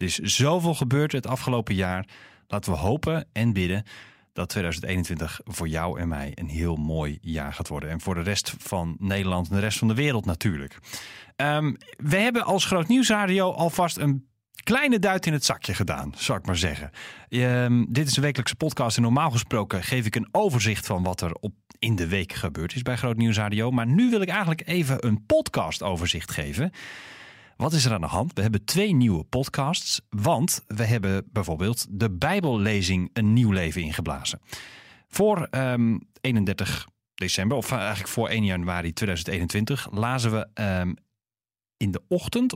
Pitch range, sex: 95-135 Hz, male